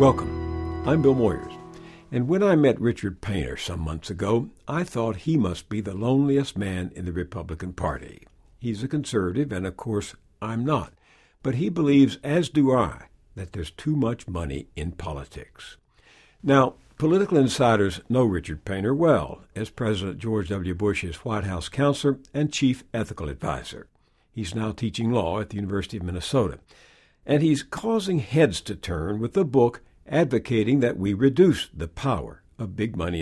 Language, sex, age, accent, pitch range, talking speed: English, male, 60-79, American, 95-135 Hz, 165 wpm